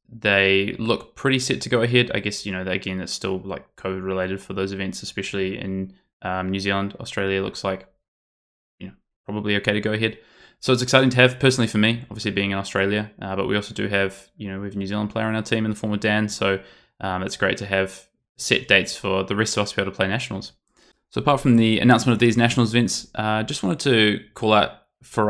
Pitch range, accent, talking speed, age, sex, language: 100-115 Hz, Australian, 245 wpm, 20-39, male, English